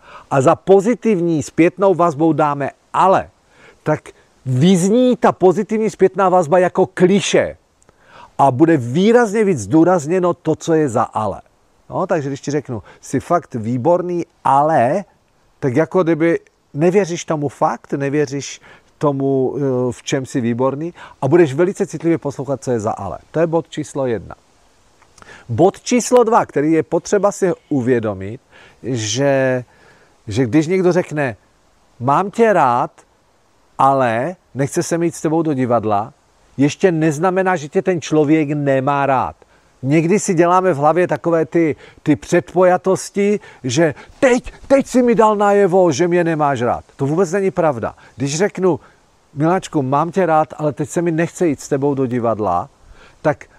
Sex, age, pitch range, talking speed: male, 40-59, 140-185 Hz, 150 wpm